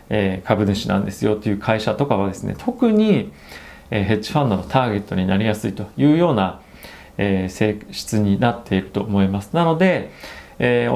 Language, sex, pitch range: Japanese, male, 100-140 Hz